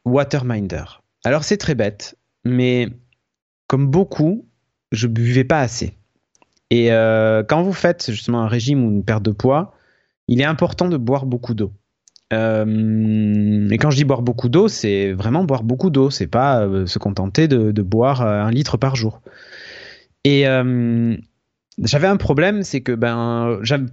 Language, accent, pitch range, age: French, French, 115-155 Hz, 30-49